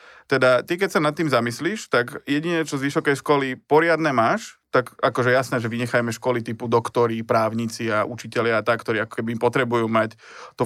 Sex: male